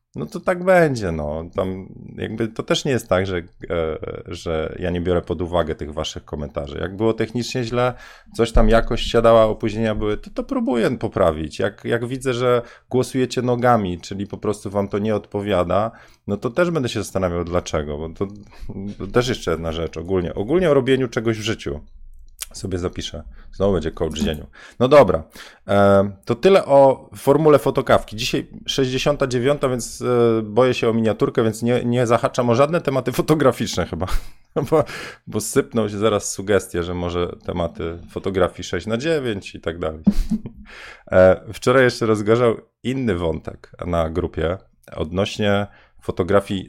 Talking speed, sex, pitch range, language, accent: 160 wpm, male, 85-120 Hz, Polish, native